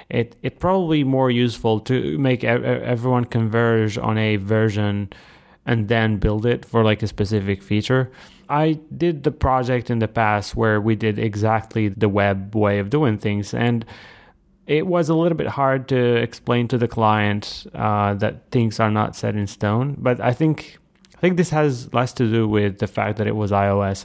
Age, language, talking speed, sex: 20-39, English, 185 wpm, male